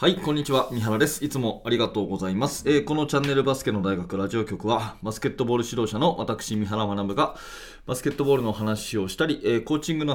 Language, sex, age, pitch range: Japanese, male, 20-39, 105-140 Hz